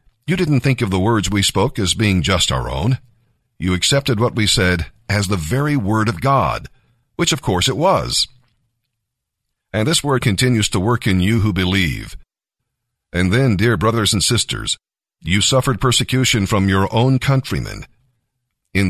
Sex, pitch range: male, 100-125 Hz